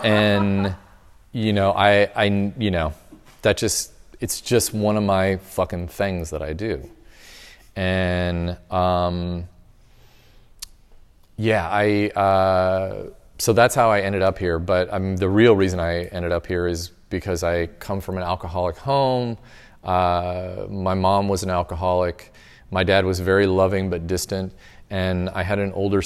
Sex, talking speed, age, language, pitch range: male, 150 wpm, 30-49, English, 90-100 Hz